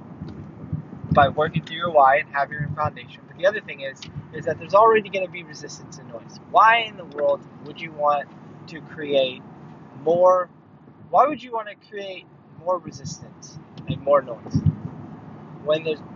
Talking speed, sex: 175 wpm, male